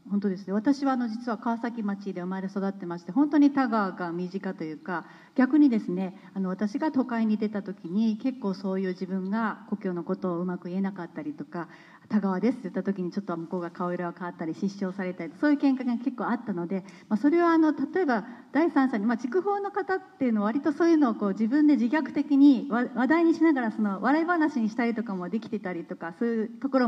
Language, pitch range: Japanese, 190-265 Hz